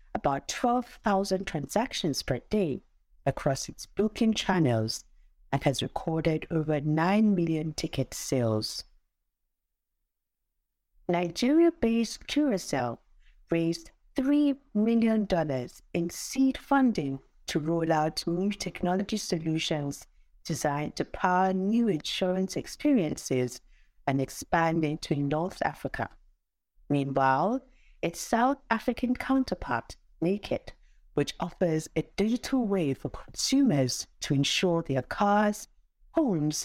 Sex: female